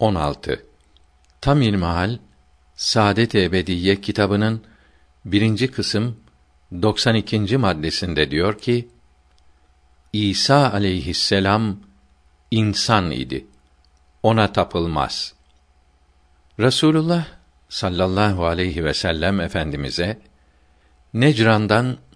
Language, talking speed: Turkish, 70 wpm